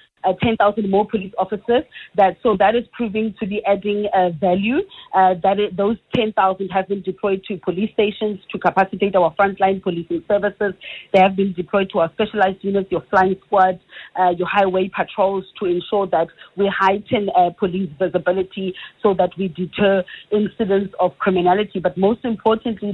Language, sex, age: English, female, 30-49